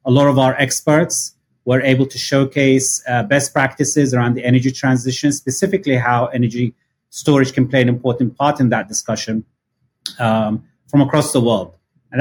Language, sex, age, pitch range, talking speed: English, male, 30-49, 110-130 Hz, 165 wpm